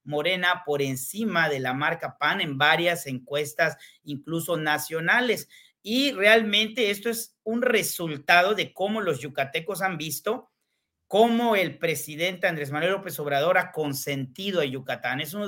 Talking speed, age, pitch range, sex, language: 145 wpm, 40-59, 150-195 Hz, male, Spanish